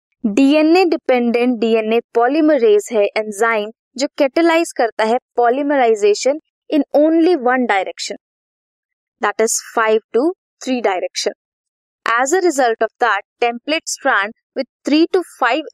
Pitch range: 215-295 Hz